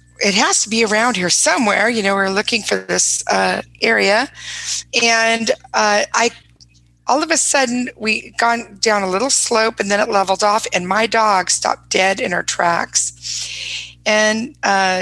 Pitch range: 195-250 Hz